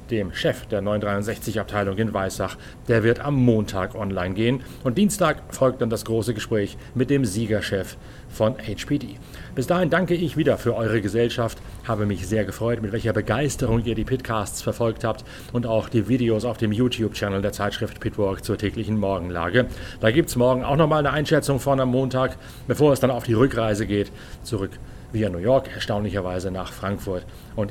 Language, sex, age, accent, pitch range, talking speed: German, male, 40-59, German, 105-130 Hz, 180 wpm